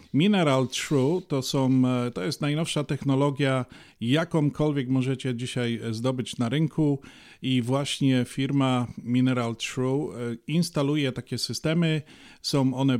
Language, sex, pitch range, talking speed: Polish, male, 125-150 Hz, 110 wpm